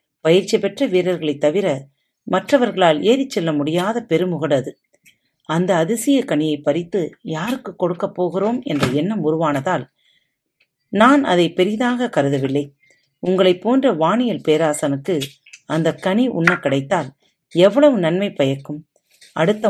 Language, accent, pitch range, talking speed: Tamil, native, 145-210 Hz, 105 wpm